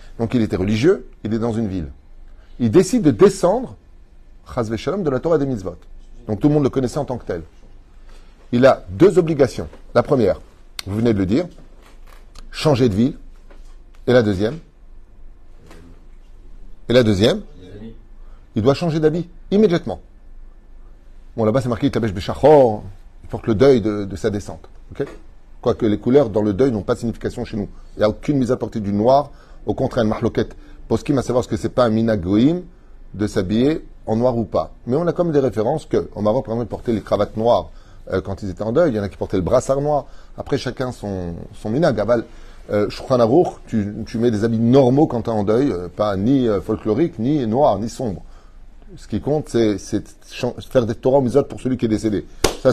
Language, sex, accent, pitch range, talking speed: French, male, French, 100-130 Hz, 205 wpm